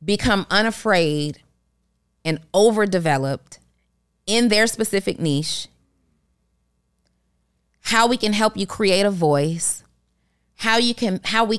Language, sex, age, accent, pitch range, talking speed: English, female, 30-49, American, 165-220 Hz, 110 wpm